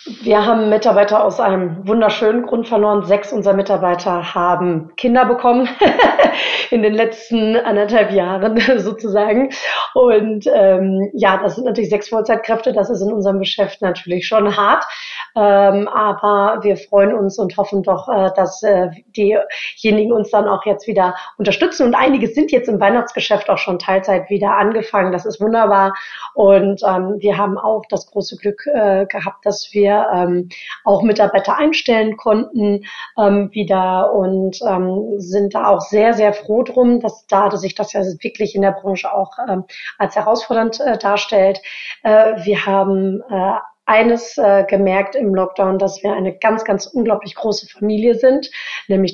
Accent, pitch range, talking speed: German, 195-220 Hz, 160 wpm